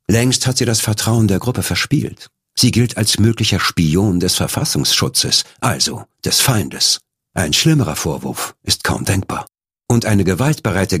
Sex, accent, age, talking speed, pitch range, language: male, German, 50-69, 145 wpm, 90-125 Hz, German